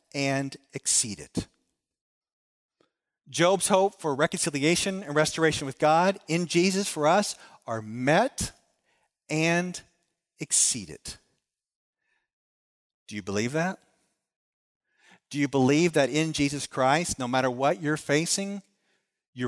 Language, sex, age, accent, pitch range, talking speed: English, male, 40-59, American, 135-195 Hz, 110 wpm